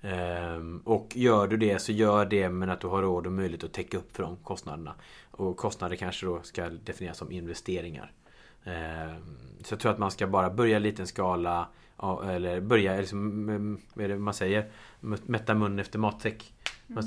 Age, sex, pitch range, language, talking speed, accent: 30-49, male, 90-105 Hz, Swedish, 175 wpm, Norwegian